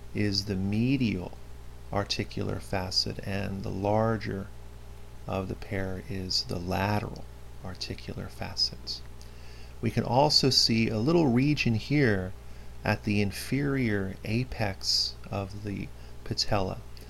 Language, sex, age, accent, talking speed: English, male, 40-59, American, 110 wpm